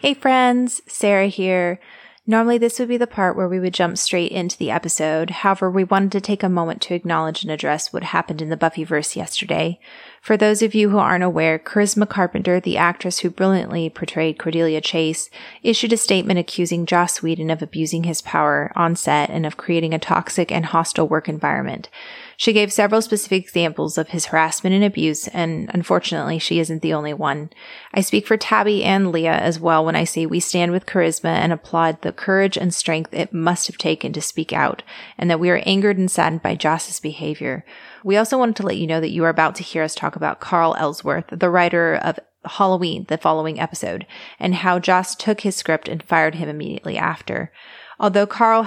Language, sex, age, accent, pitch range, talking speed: English, female, 30-49, American, 160-195 Hz, 205 wpm